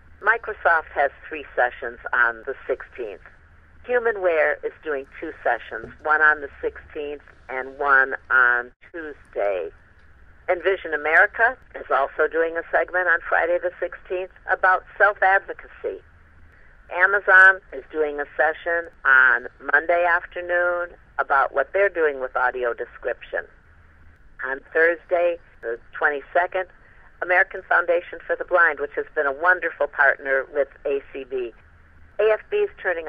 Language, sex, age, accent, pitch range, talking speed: English, female, 50-69, American, 150-190 Hz, 125 wpm